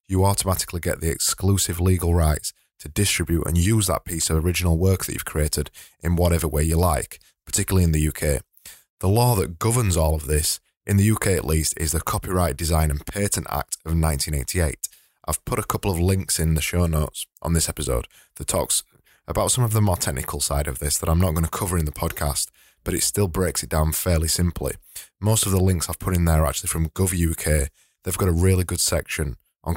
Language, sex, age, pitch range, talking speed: English, male, 20-39, 80-95 Hz, 220 wpm